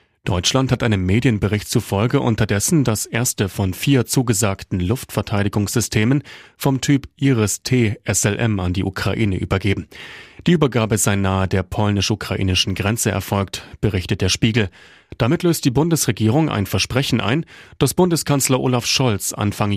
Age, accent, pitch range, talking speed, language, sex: 30-49, German, 100-130 Hz, 130 wpm, German, male